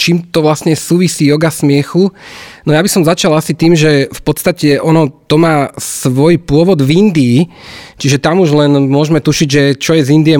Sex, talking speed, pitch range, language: male, 195 wpm, 135-170 Hz, Slovak